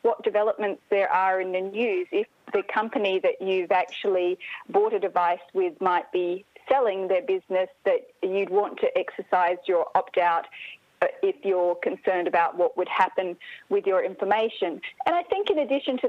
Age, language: 30-49, English